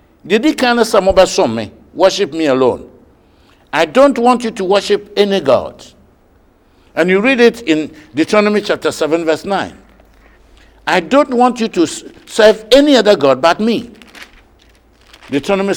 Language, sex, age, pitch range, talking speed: English, male, 60-79, 170-250 Hz, 145 wpm